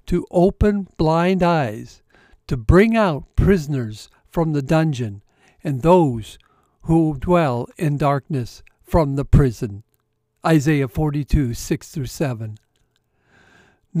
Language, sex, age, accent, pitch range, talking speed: English, male, 60-79, American, 135-200 Hz, 95 wpm